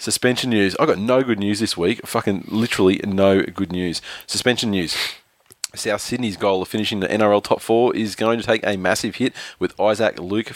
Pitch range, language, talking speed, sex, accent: 95-105 Hz, English, 200 wpm, male, Australian